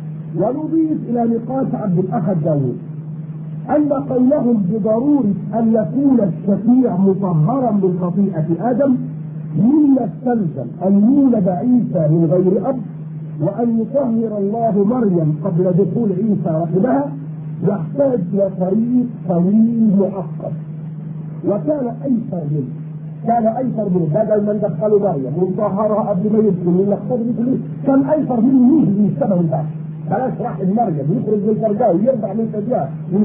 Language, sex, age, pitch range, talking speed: Arabic, male, 50-69, 165-235 Hz, 110 wpm